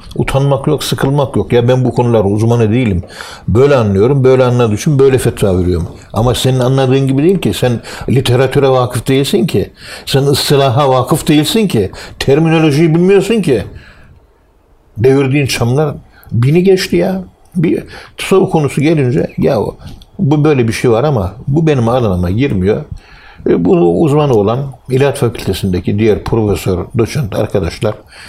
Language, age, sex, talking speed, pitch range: Turkish, 60-79, male, 140 wpm, 110-140 Hz